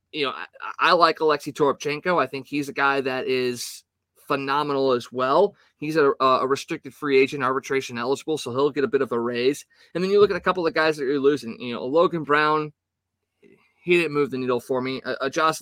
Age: 20-39